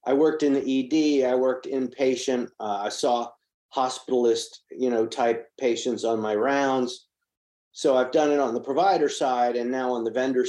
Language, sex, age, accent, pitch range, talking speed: English, male, 50-69, American, 115-140 Hz, 185 wpm